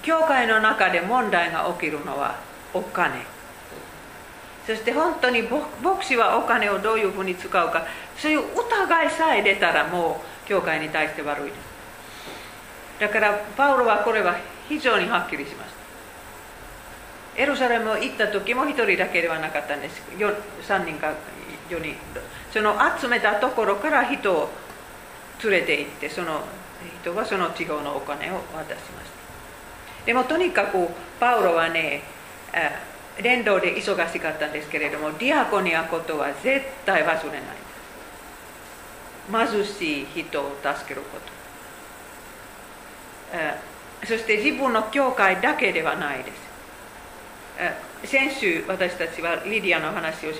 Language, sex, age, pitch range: Japanese, female, 40-59, 160-240 Hz